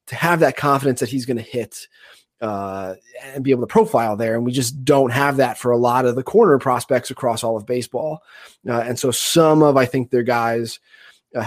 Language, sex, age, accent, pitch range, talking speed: English, male, 20-39, American, 120-170 Hz, 220 wpm